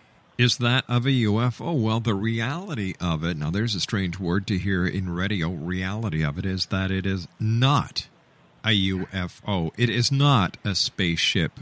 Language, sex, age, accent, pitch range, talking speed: English, male, 50-69, American, 90-125 Hz, 175 wpm